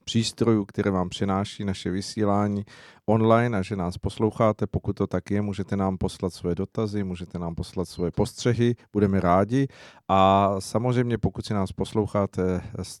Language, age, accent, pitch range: Czech, 40-59, native, 95-110 Hz